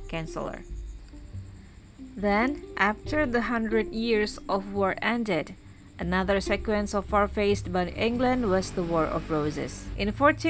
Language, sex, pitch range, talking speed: Indonesian, female, 165-220 Hz, 120 wpm